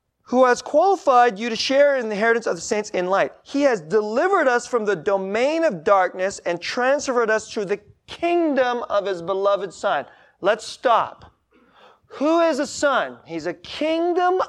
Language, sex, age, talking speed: English, male, 30-49, 175 wpm